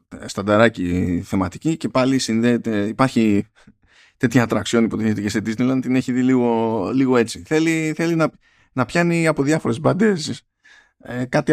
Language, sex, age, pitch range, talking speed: Greek, male, 20-39, 110-145 Hz, 140 wpm